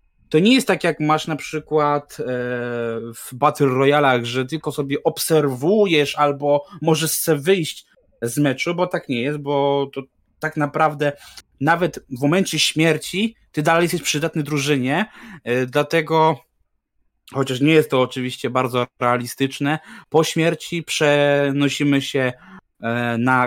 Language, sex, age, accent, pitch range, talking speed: Polish, male, 20-39, native, 135-175 Hz, 130 wpm